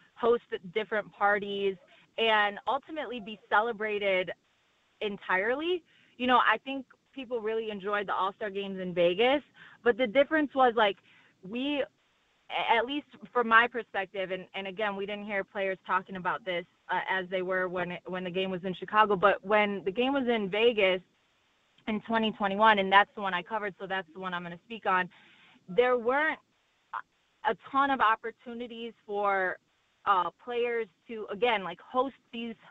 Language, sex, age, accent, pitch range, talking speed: English, female, 20-39, American, 195-235 Hz, 165 wpm